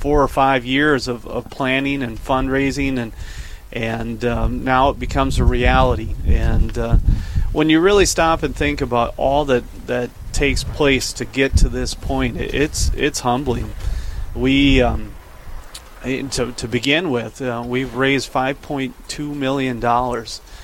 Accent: American